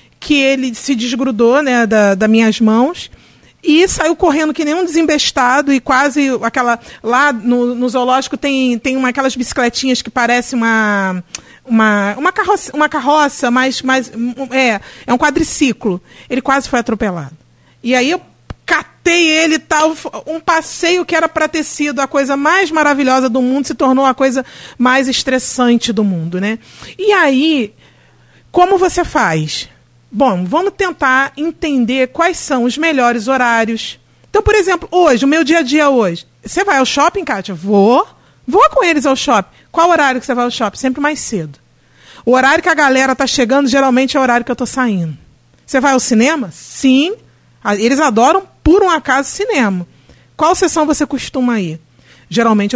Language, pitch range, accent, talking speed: Portuguese, 230-300 Hz, Brazilian, 175 wpm